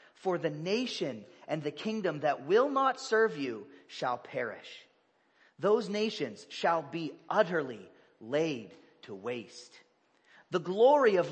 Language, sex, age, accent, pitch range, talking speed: English, male, 40-59, American, 150-240 Hz, 125 wpm